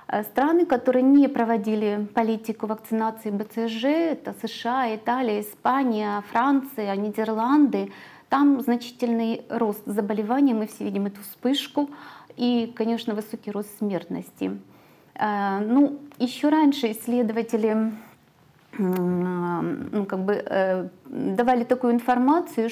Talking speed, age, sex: 90 wpm, 30-49, female